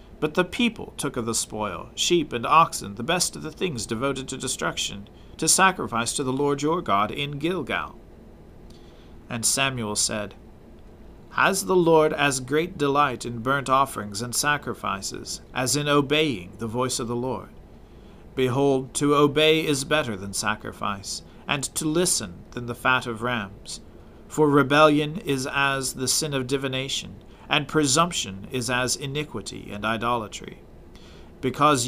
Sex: male